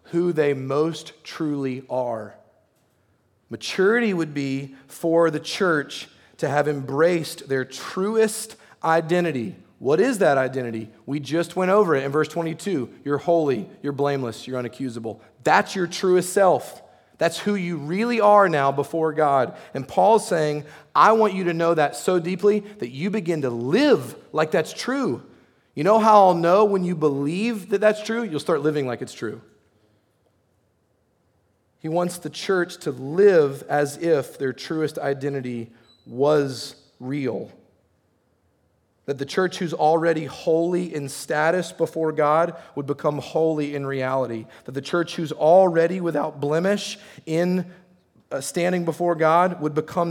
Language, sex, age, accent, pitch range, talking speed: English, male, 30-49, American, 135-175 Hz, 150 wpm